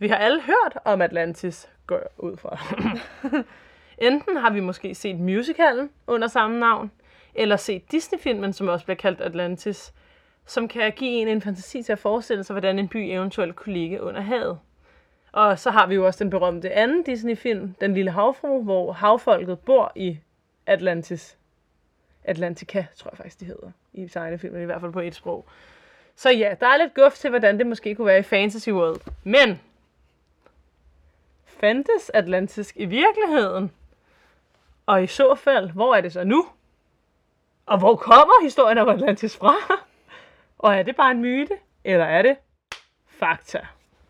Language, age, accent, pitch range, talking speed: Danish, 20-39, native, 190-270 Hz, 165 wpm